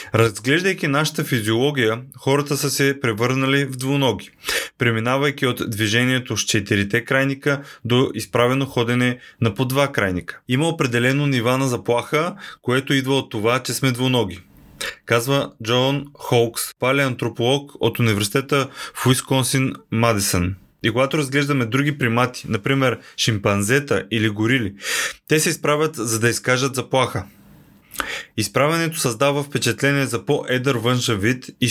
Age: 20-39